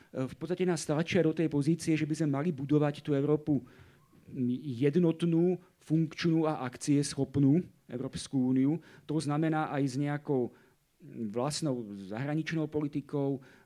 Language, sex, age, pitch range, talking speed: Slovak, male, 40-59, 135-170 Hz, 125 wpm